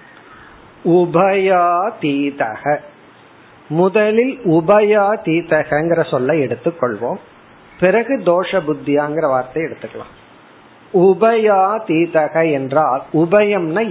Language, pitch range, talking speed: Tamil, 150-195 Hz, 45 wpm